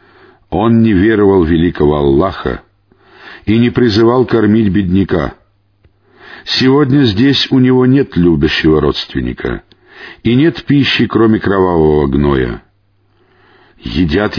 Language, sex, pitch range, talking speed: Russian, male, 90-125 Hz, 100 wpm